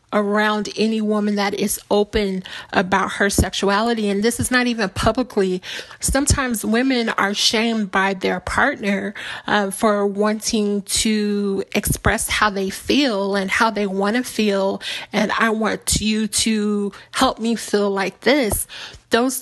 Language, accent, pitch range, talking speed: English, American, 200-225 Hz, 145 wpm